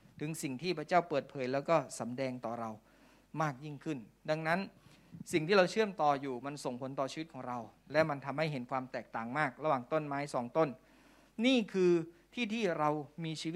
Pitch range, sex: 130-170 Hz, male